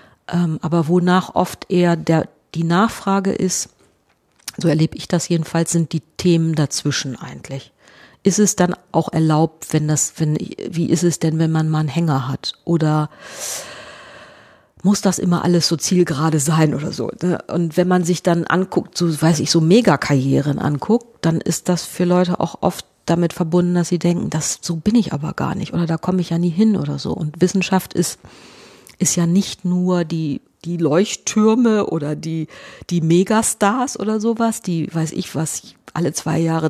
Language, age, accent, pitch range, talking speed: German, 40-59, German, 160-190 Hz, 180 wpm